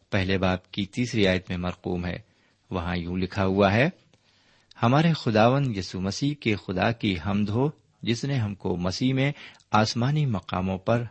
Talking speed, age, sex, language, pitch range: 165 wpm, 50-69, male, Urdu, 95-130 Hz